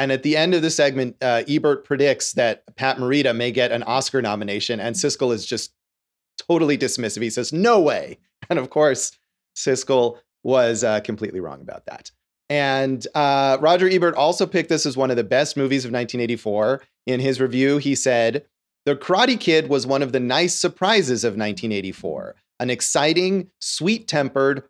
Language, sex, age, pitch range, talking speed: English, male, 30-49, 125-165 Hz, 175 wpm